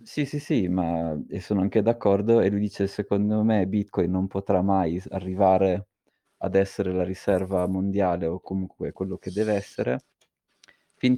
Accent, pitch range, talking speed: native, 90-100 Hz, 160 wpm